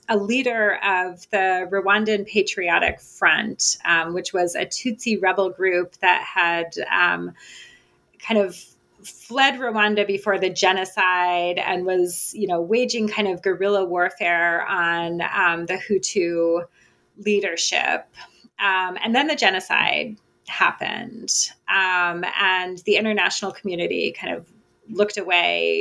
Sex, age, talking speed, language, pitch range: female, 30-49, 125 wpm, English, 175-210 Hz